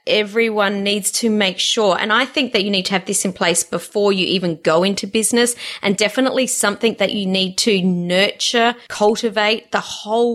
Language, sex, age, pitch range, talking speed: English, female, 30-49, 190-235 Hz, 190 wpm